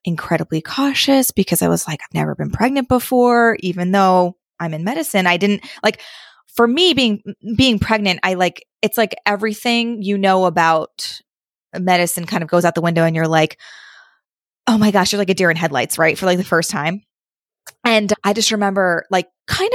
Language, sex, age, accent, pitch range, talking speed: English, female, 20-39, American, 170-225 Hz, 190 wpm